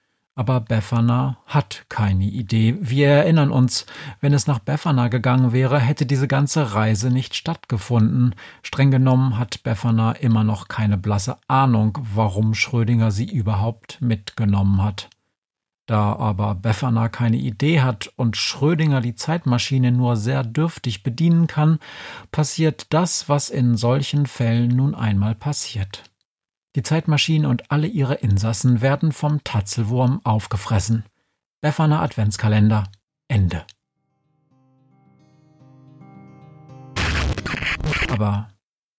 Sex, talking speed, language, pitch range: male, 110 wpm, German, 110-140 Hz